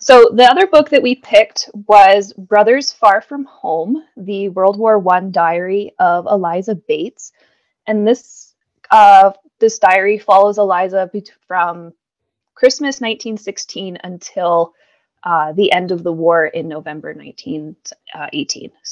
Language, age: English, 20-39